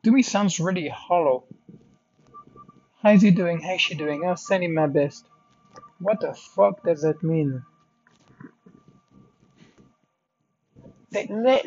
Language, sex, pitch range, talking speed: English, male, 150-205 Hz, 125 wpm